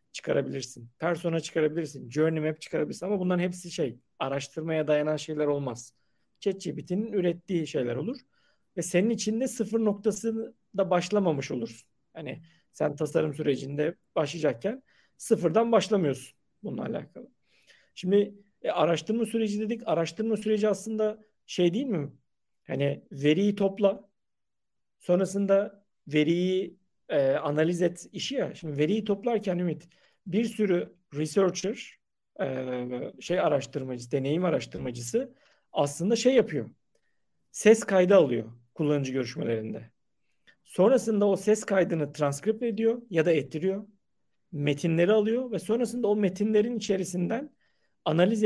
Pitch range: 155-215 Hz